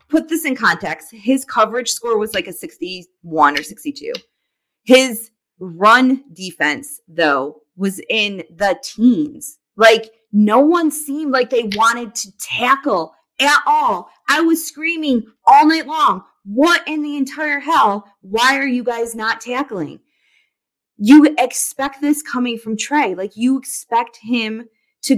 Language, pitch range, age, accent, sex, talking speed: English, 210-290 Hz, 20-39, American, female, 145 wpm